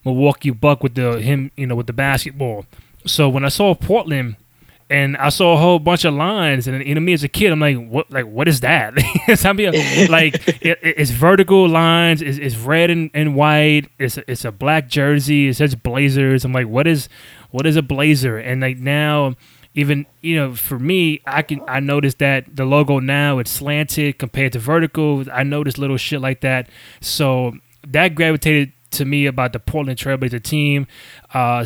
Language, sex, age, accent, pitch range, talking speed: English, male, 20-39, American, 125-150 Hz, 195 wpm